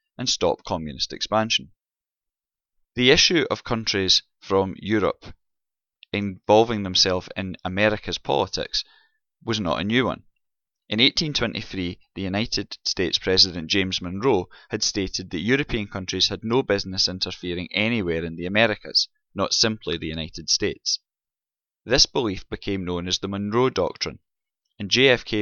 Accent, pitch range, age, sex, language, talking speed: British, 90-110 Hz, 20-39, male, English, 130 wpm